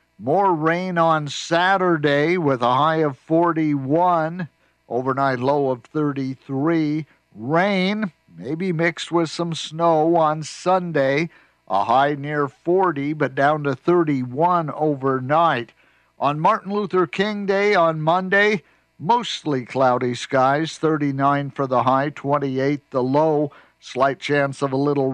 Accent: American